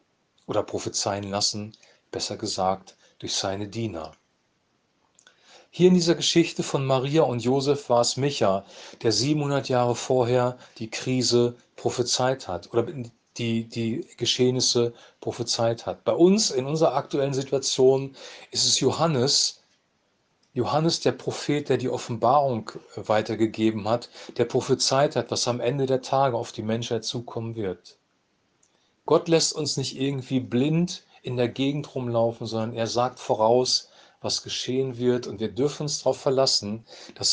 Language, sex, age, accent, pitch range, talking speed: German, male, 40-59, German, 115-140 Hz, 140 wpm